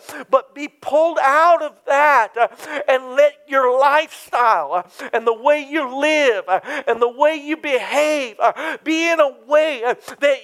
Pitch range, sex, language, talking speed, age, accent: 250-300 Hz, male, English, 170 wpm, 50-69, American